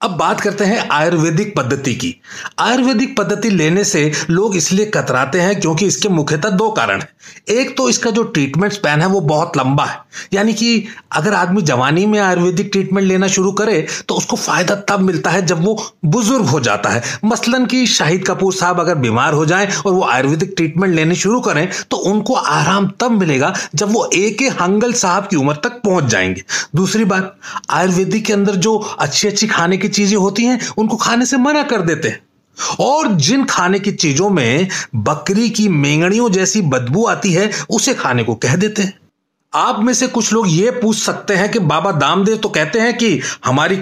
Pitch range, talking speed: 165-215 Hz, 195 wpm